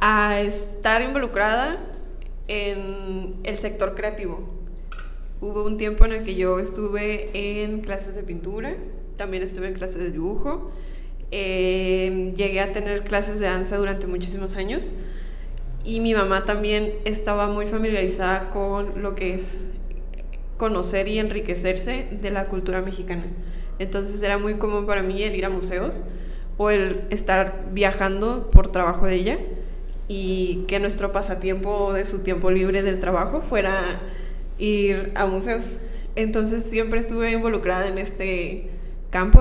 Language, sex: Spanish, female